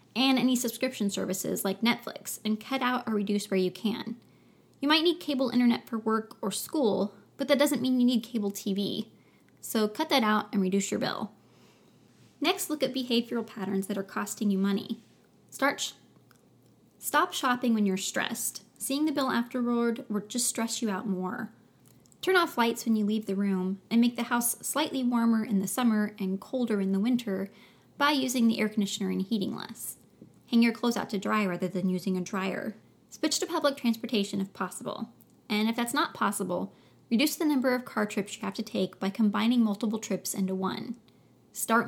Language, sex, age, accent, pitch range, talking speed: English, female, 20-39, American, 200-245 Hz, 190 wpm